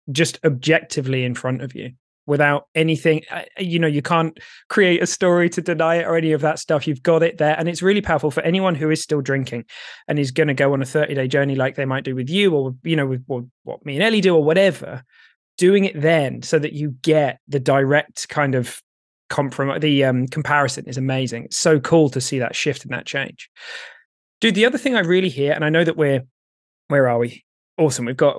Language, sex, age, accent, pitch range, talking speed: English, male, 20-39, British, 135-165 Hz, 230 wpm